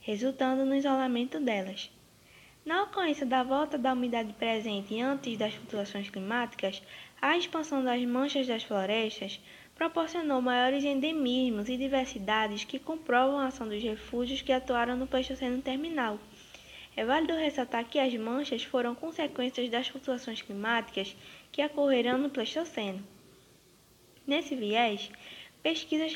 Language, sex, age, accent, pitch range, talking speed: Portuguese, female, 10-29, Brazilian, 225-275 Hz, 125 wpm